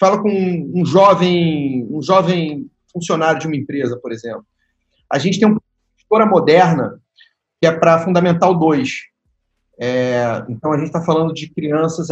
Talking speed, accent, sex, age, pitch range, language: 155 wpm, Brazilian, male, 40-59, 155-205 Hz, Portuguese